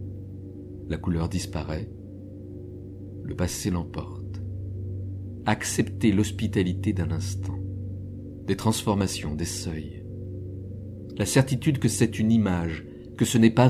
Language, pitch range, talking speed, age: French, 95-105 Hz, 105 wpm, 50-69